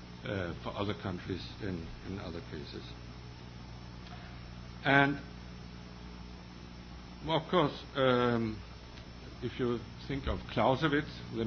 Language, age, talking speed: English, 60-79, 95 wpm